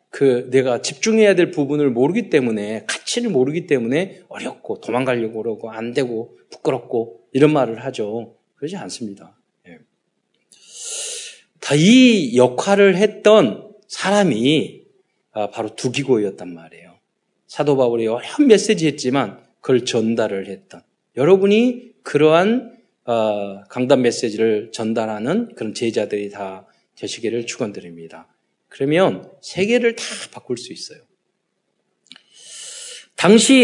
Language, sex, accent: Korean, male, native